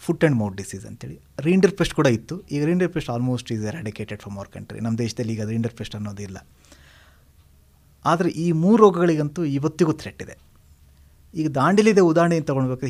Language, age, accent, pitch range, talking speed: Hindi, 30-49, native, 105-170 Hz, 100 wpm